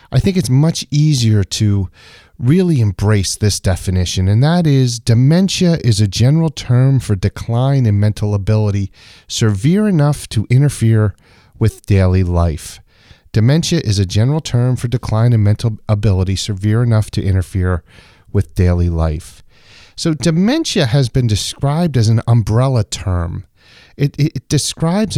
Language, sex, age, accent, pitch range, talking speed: English, male, 40-59, American, 100-150 Hz, 140 wpm